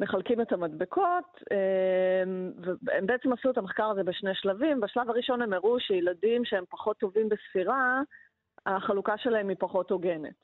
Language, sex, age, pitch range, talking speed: Hebrew, female, 30-49, 185-245 Hz, 150 wpm